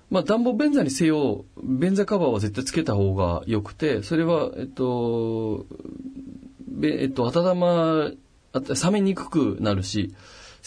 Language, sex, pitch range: Japanese, male, 100-155 Hz